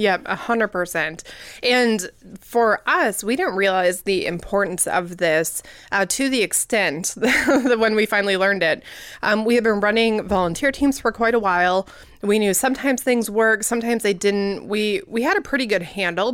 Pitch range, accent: 185-230 Hz, American